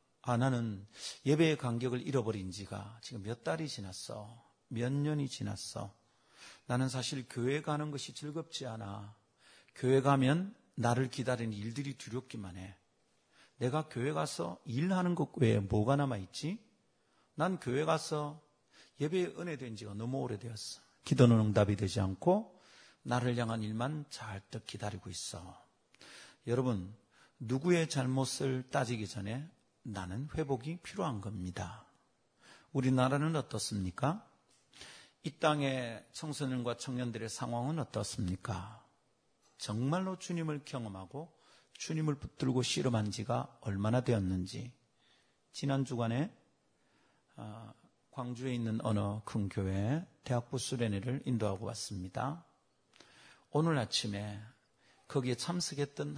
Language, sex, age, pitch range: Korean, male, 40-59, 105-140 Hz